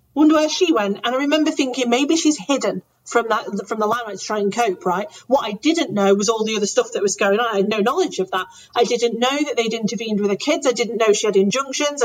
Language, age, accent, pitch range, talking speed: English, 40-59, British, 205-280 Hz, 280 wpm